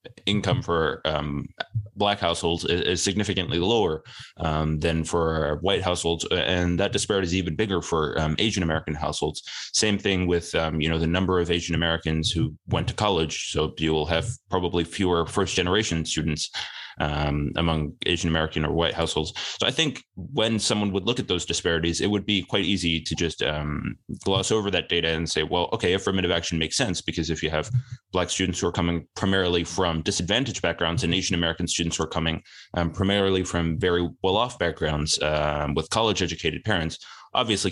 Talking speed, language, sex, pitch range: 185 wpm, English, male, 80-95 Hz